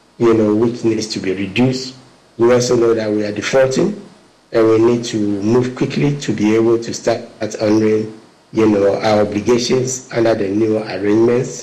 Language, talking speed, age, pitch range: English, 180 wpm, 50-69, 105-125 Hz